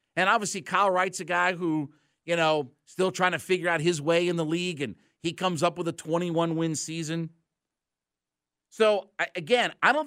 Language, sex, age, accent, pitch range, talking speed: English, male, 50-69, American, 140-180 Hz, 185 wpm